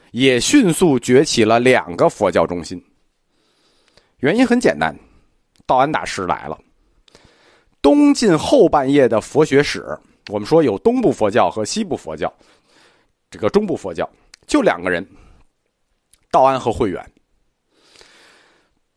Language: Chinese